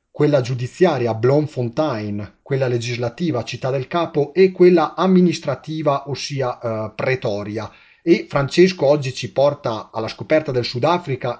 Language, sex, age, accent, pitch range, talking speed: Italian, male, 30-49, native, 115-150 Hz, 120 wpm